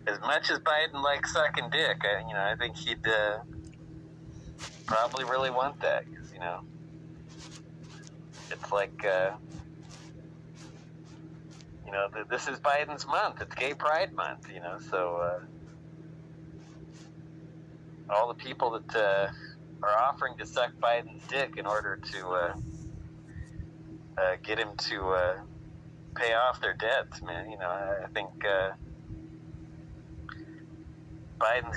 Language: English